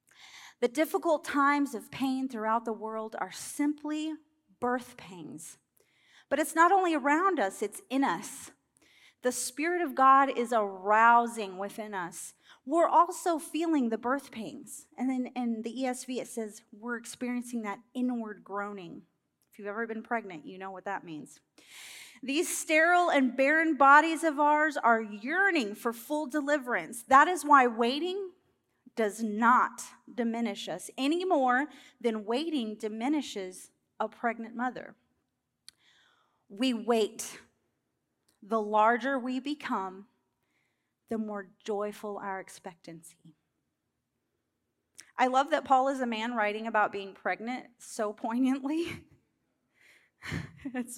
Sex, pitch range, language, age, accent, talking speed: female, 220-285 Hz, English, 30-49, American, 130 wpm